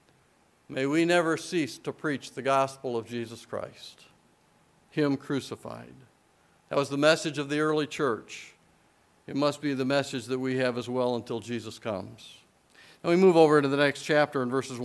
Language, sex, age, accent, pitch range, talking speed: English, male, 50-69, American, 135-165 Hz, 180 wpm